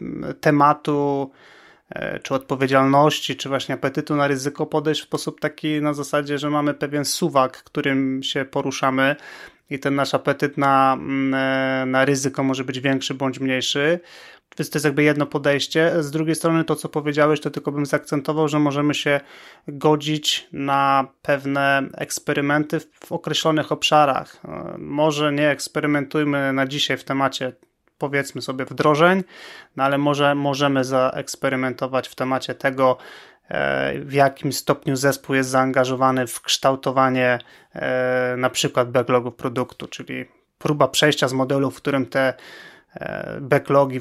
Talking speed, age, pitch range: 135 wpm, 30-49, 130-150 Hz